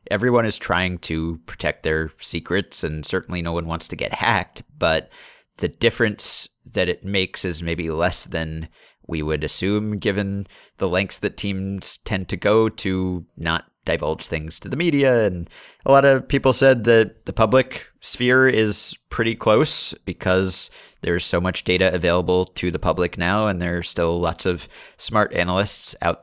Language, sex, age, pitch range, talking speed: English, male, 30-49, 85-110 Hz, 170 wpm